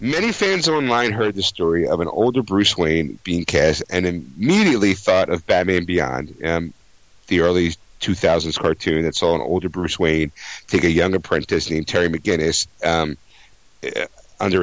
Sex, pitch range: male, 90-115 Hz